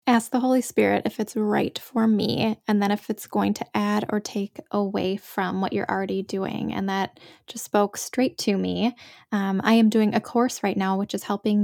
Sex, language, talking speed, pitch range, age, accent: female, English, 215 wpm, 200-235 Hz, 10-29, American